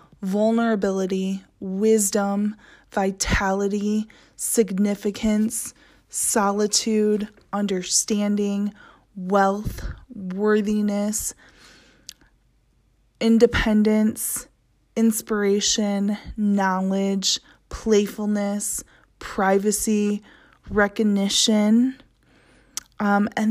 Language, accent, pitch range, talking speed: English, American, 200-230 Hz, 40 wpm